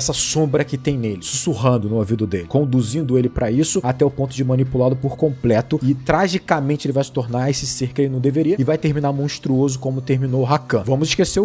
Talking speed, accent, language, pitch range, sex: 220 wpm, Brazilian, Portuguese, 125-160 Hz, male